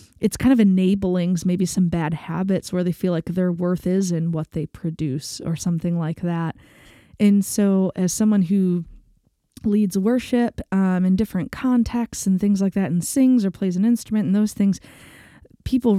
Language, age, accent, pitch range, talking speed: English, 20-39, American, 165-195 Hz, 180 wpm